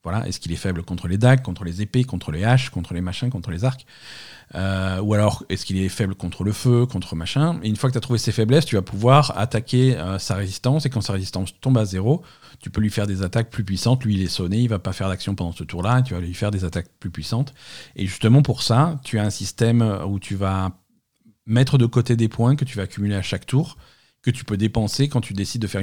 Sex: male